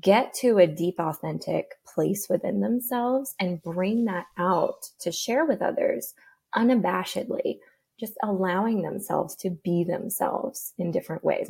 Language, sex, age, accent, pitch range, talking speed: English, female, 20-39, American, 175-210 Hz, 135 wpm